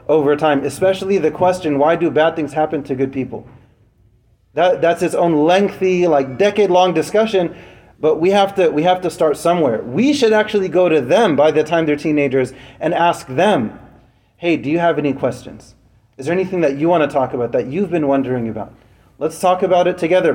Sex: male